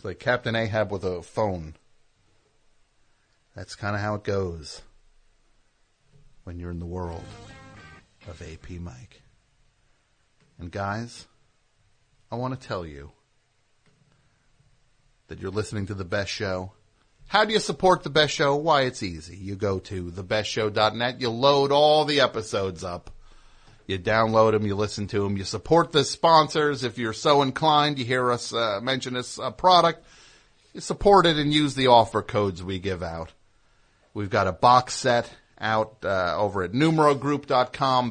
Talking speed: 155 wpm